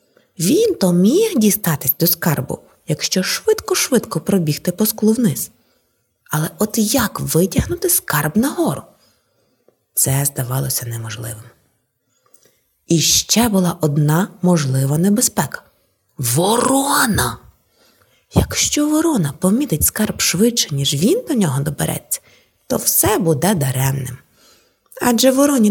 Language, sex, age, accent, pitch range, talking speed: Ukrainian, female, 20-39, native, 155-230 Hz, 105 wpm